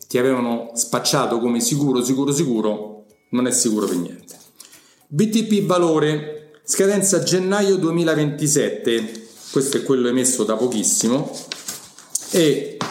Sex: male